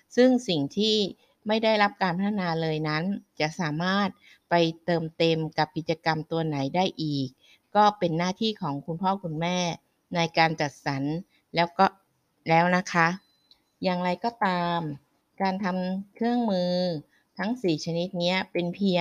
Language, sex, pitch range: Thai, female, 160-200 Hz